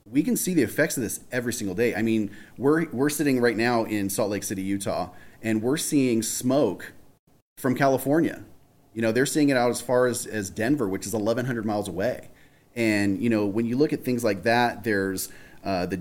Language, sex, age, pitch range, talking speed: English, male, 30-49, 105-140 Hz, 215 wpm